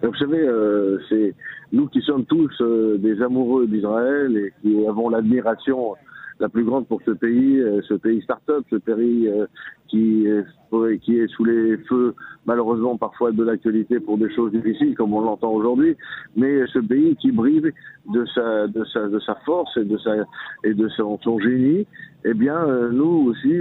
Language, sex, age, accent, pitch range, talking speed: French, male, 50-69, French, 110-125 Hz, 185 wpm